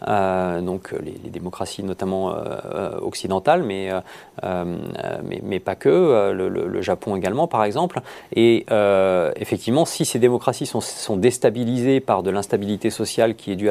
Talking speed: 170 wpm